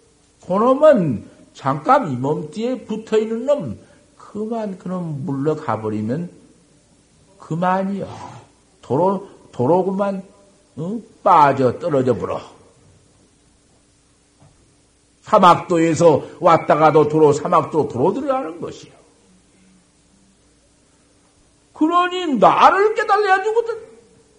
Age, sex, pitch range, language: 60-79, male, 190-255 Hz, Korean